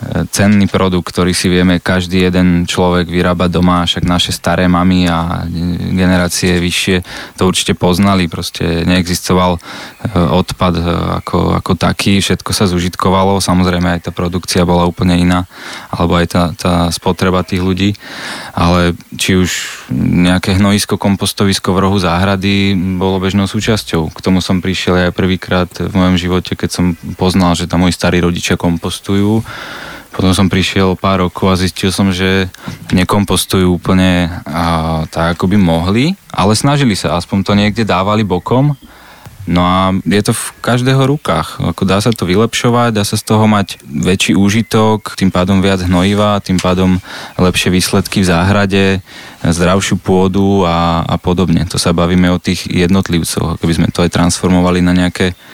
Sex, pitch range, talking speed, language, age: male, 90-100 Hz, 155 wpm, Slovak, 20-39